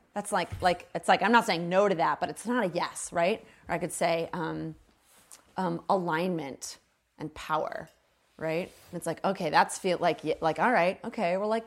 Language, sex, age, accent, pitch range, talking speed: English, female, 30-49, American, 155-195 Hz, 200 wpm